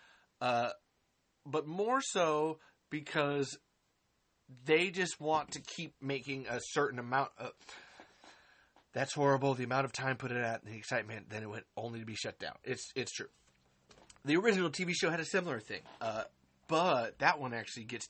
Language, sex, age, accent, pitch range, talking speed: English, male, 30-49, American, 115-150 Hz, 170 wpm